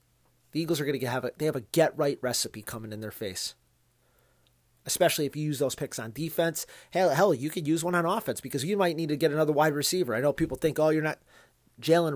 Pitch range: 125-165 Hz